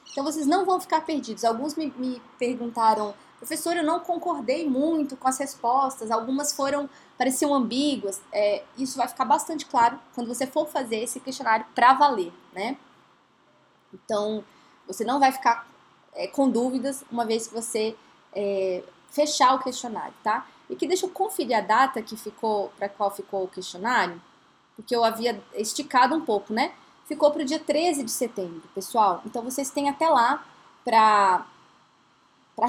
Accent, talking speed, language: Brazilian, 165 wpm, Portuguese